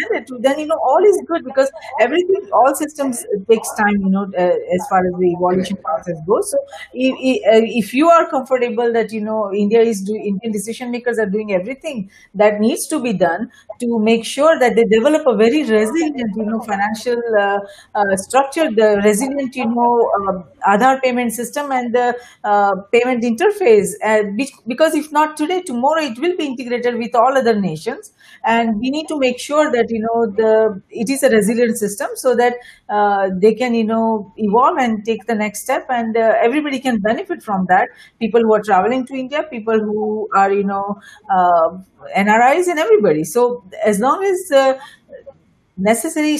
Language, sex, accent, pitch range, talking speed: English, female, Indian, 210-265 Hz, 190 wpm